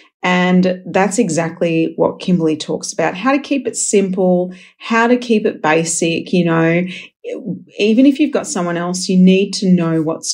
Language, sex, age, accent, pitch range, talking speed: English, female, 40-59, Australian, 170-240 Hz, 175 wpm